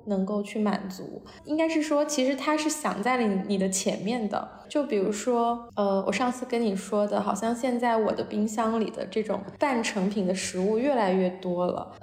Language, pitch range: Chinese, 195-245 Hz